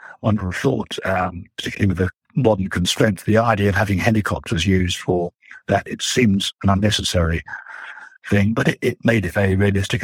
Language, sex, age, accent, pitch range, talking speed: English, male, 60-79, British, 90-105 Hz, 165 wpm